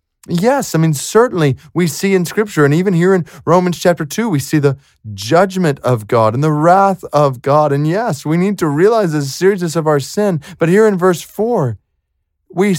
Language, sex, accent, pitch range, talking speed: English, male, American, 140-175 Hz, 200 wpm